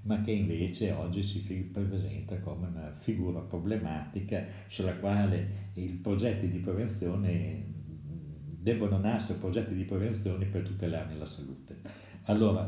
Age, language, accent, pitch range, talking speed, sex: 60-79, Italian, native, 95-110 Hz, 125 wpm, male